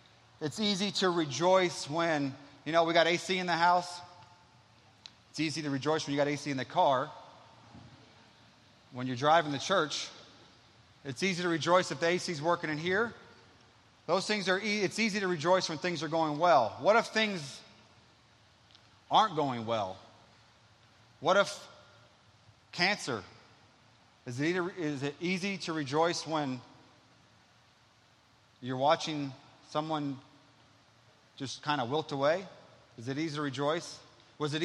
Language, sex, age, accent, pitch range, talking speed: English, male, 30-49, American, 120-165 Hz, 150 wpm